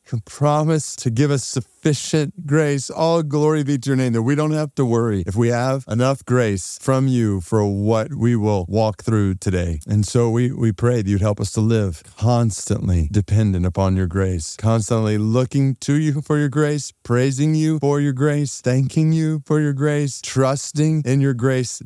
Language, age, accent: English, 30-49, American